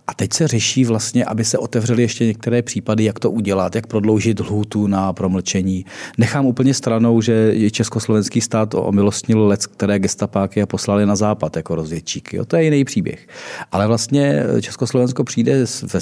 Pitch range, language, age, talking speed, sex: 105-120 Hz, Czech, 40-59, 170 wpm, male